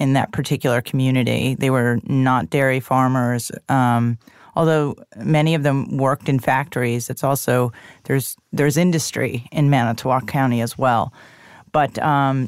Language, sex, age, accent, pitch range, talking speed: English, female, 30-49, American, 130-155 Hz, 140 wpm